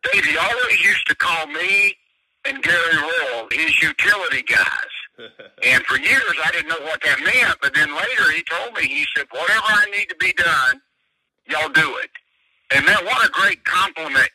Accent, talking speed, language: American, 185 wpm, English